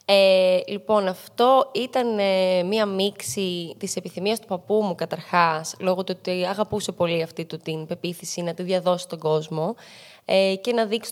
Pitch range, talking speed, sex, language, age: 175-215 Hz, 165 wpm, female, Greek, 20-39